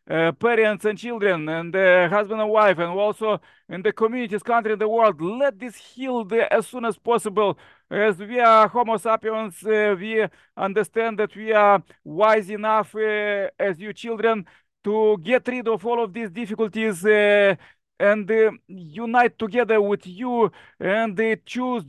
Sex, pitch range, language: male, 205-235 Hz, English